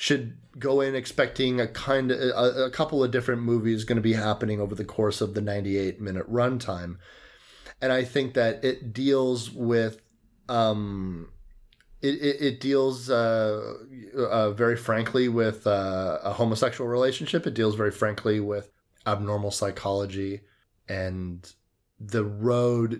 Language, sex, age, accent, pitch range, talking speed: English, male, 30-49, American, 100-120 Hz, 145 wpm